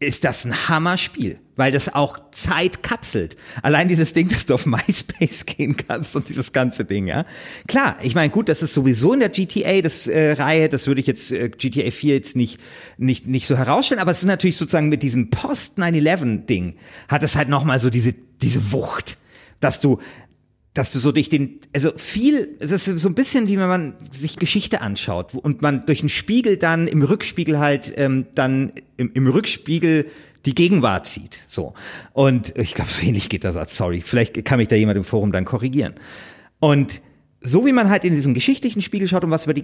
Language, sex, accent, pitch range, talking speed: German, male, German, 130-175 Hz, 205 wpm